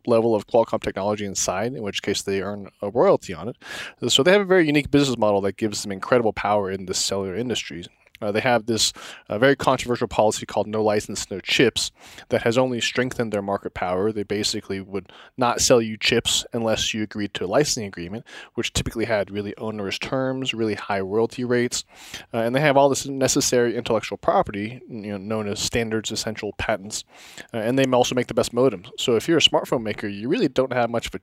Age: 20-39